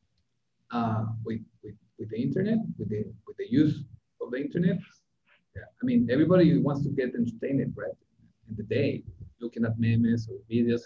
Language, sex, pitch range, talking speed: English, male, 120-165 Hz, 170 wpm